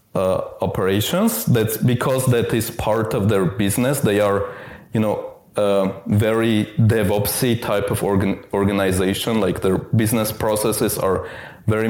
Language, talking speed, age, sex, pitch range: English, 140 wpm, 20-39, male, 100-130 Hz